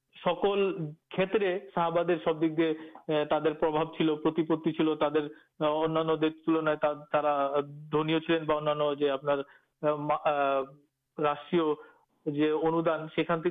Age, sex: 50-69, male